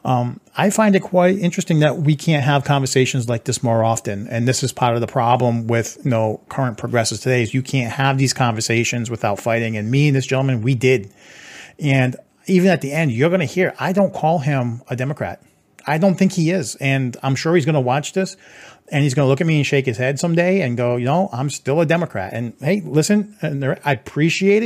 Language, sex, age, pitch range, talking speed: English, male, 40-59, 125-170 Hz, 235 wpm